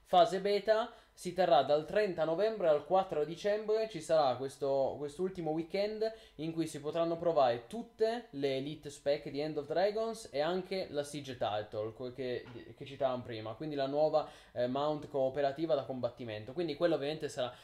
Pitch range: 135-170 Hz